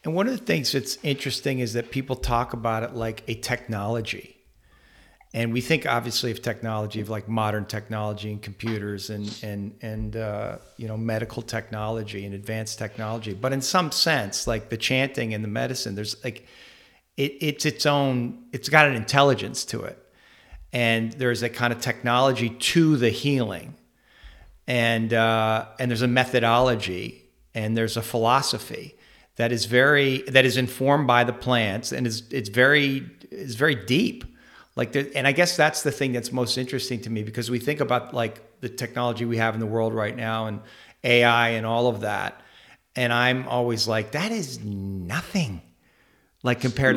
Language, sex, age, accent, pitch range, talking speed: English, male, 40-59, American, 110-130 Hz, 175 wpm